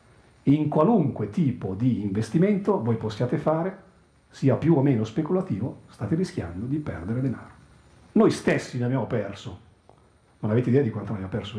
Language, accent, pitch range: Italian, native, 110-140 Hz